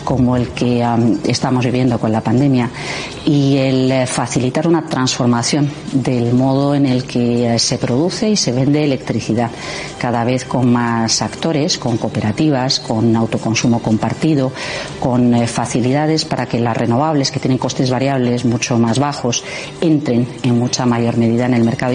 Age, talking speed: 40-59, 150 wpm